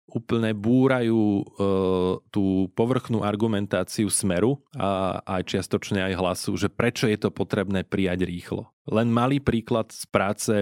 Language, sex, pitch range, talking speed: Slovak, male, 95-120 Hz, 135 wpm